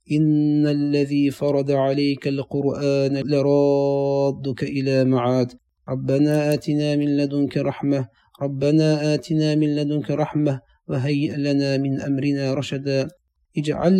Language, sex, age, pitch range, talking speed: Turkish, male, 40-59, 140-150 Hz, 105 wpm